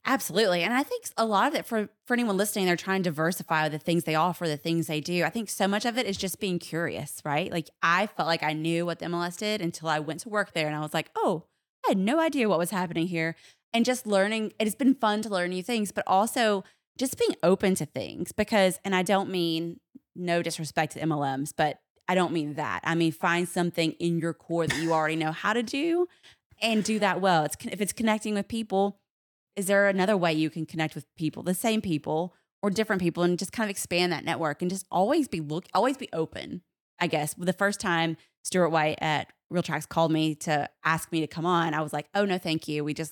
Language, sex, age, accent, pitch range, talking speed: English, female, 20-39, American, 160-210 Hz, 245 wpm